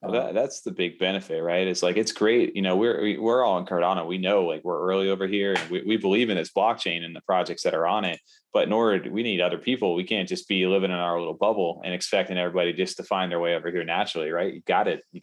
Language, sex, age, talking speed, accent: English, male, 20-39, 280 wpm, American